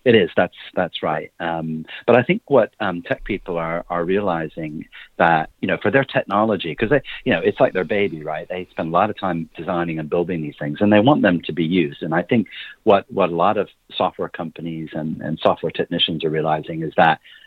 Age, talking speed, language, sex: 40-59, 225 wpm, English, male